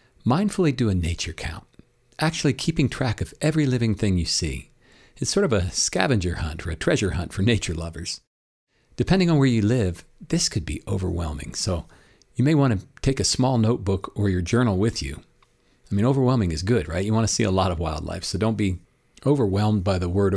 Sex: male